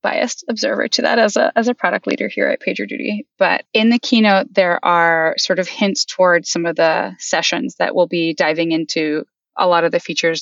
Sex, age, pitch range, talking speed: female, 20-39, 160-205 Hz, 215 wpm